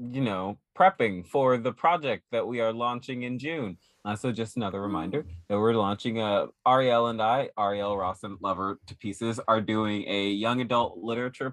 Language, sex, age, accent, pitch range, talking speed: English, male, 20-39, American, 105-130 Hz, 185 wpm